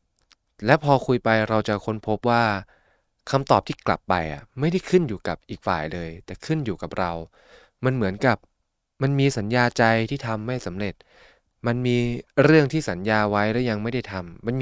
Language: Thai